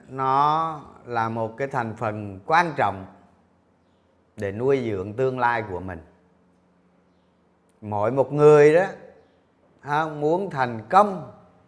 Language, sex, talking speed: Vietnamese, male, 115 wpm